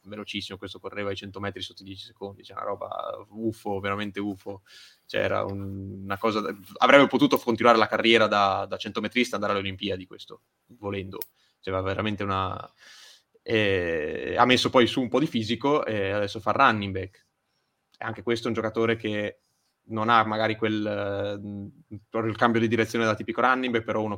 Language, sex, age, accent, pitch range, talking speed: Italian, male, 20-39, native, 100-115 Hz, 185 wpm